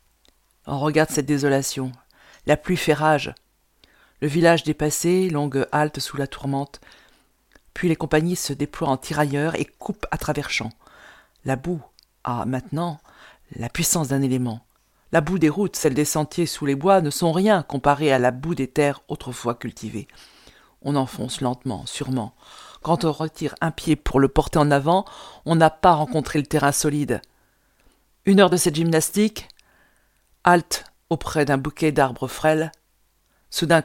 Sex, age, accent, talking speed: female, 50-69, French, 160 wpm